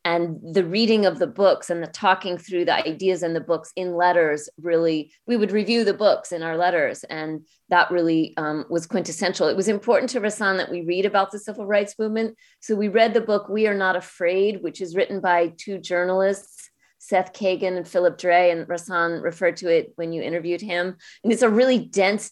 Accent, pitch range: American, 170-200 Hz